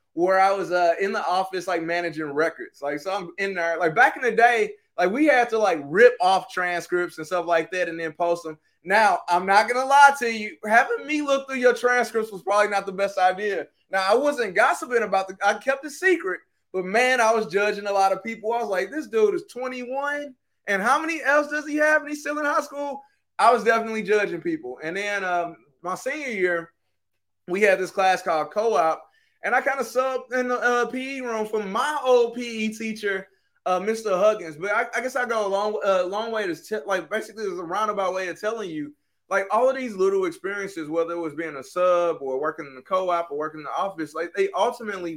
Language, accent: English, American